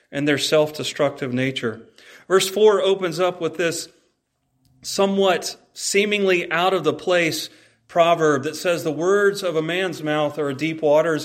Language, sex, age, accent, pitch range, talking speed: English, male, 40-59, American, 145-180 Hz, 150 wpm